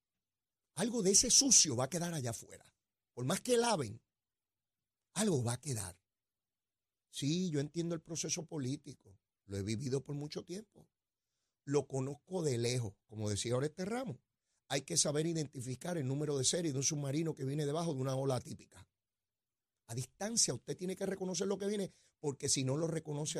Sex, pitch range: male, 115-155 Hz